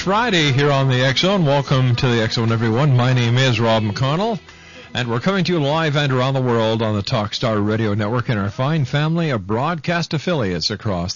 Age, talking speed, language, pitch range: 50-69, 205 wpm, English, 105-140 Hz